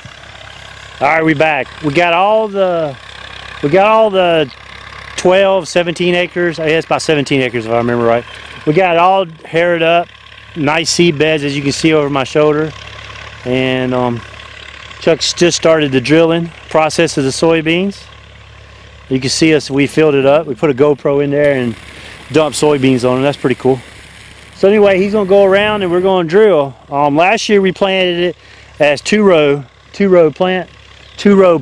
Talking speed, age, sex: 185 wpm, 30-49, male